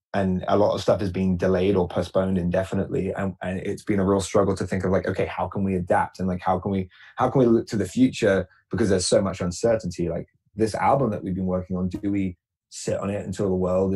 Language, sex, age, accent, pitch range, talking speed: English, male, 20-39, British, 95-110 Hz, 260 wpm